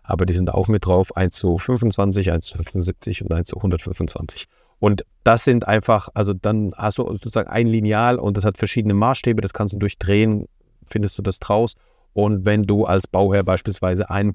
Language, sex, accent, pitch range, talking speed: German, male, German, 95-120 Hz, 195 wpm